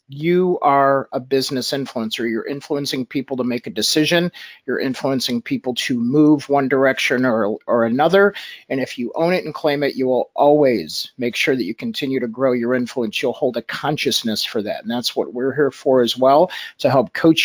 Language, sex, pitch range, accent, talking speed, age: English, male, 130-160 Hz, American, 205 wpm, 50-69